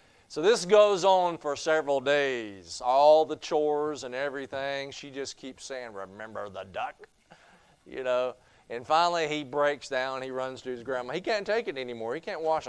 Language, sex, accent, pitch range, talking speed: English, male, American, 100-145 Hz, 185 wpm